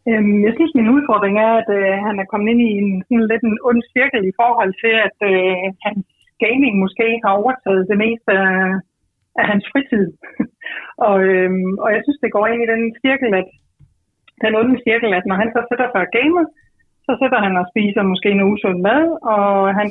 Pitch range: 195-235 Hz